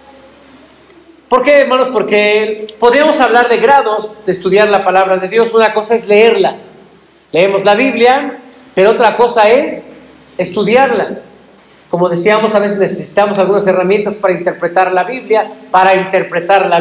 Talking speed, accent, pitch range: 140 wpm, Mexican, 195-250 Hz